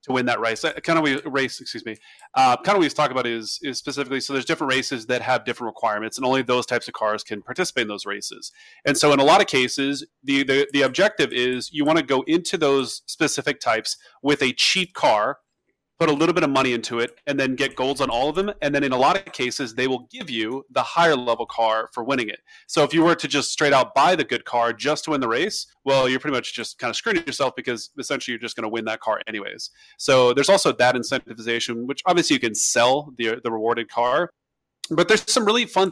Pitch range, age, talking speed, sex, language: 120-155 Hz, 30-49, 250 wpm, male, English